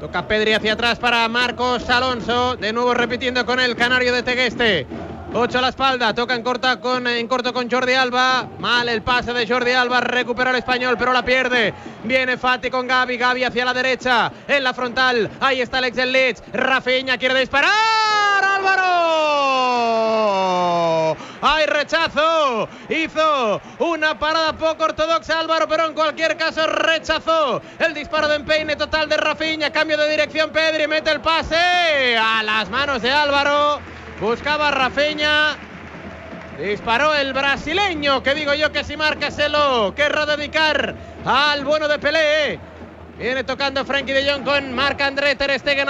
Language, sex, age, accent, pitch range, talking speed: Spanish, male, 30-49, Spanish, 250-300 Hz, 155 wpm